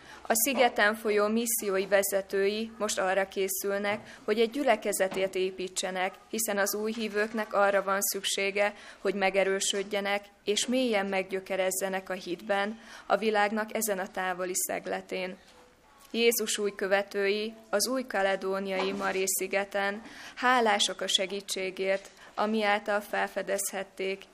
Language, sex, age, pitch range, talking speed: Hungarian, female, 20-39, 190-210 Hz, 115 wpm